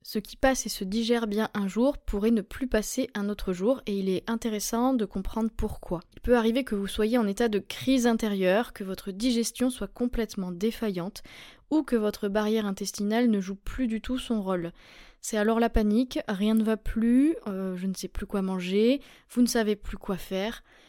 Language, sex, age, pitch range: French, female, 20-39, 200-240 Hz